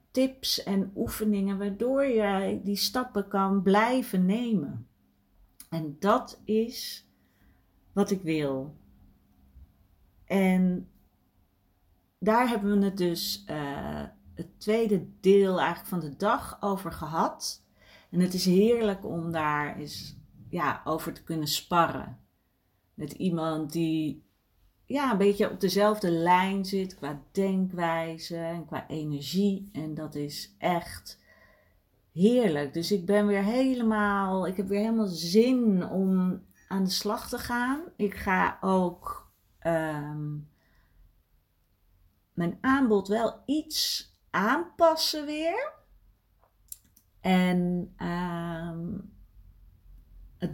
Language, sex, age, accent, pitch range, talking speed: Dutch, female, 40-59, Dutch, 145-200 Hz, 110 wpm